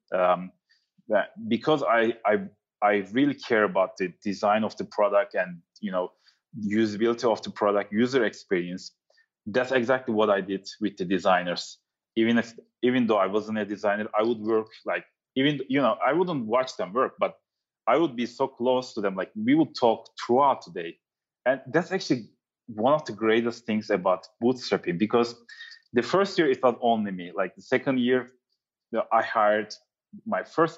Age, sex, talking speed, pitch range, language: 30-49, male, 175 wpm, 100-125 Hz, English